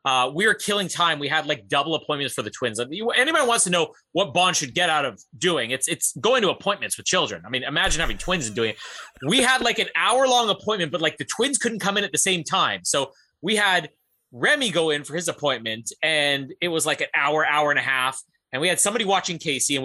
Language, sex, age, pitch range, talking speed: English, male, 30-49, 155-230 Hz, 250 wpm